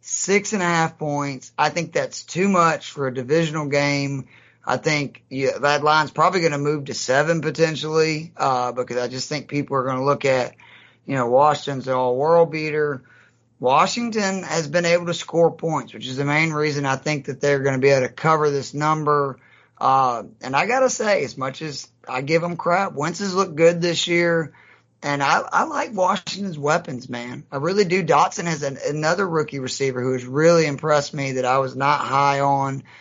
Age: 30-49